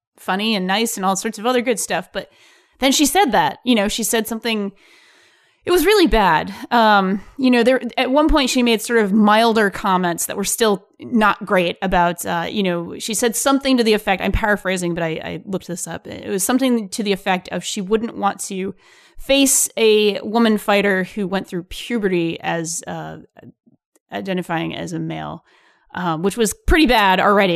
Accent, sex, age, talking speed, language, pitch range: American, female, 20-39, 200 wpm, English, 190-245 Hz